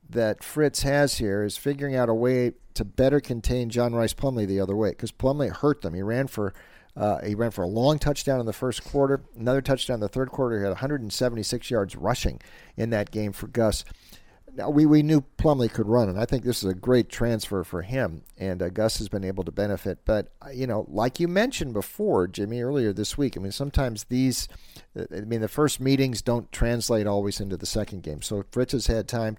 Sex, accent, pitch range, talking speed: male, American, 100-130 Hz, 225 wpm